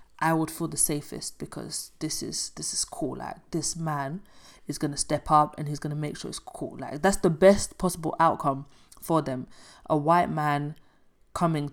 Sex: female